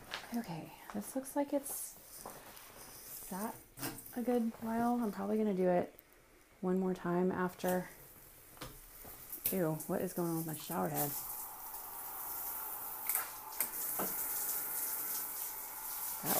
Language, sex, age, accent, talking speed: English, female, 30-49, American, 105 wpm